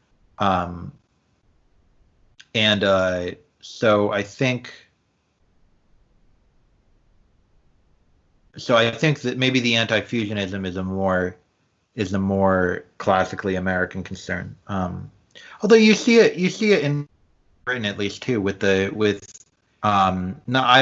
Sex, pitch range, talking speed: male, 90-105 Hz, 120 wpm